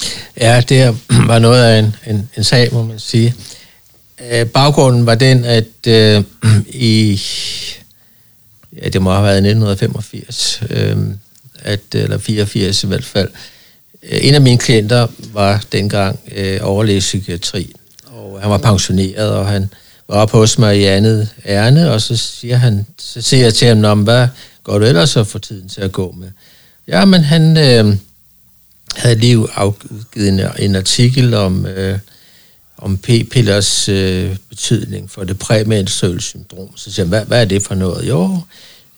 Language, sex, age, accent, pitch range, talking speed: Danish, male, 60-79, native, 100-120 Hz, 165 wpm